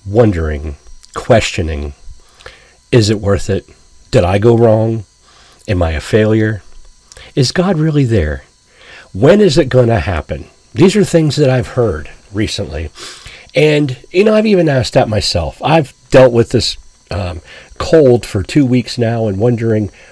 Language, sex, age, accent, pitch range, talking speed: English, male, 40-59, American, 95-130 Hz, 150 wpm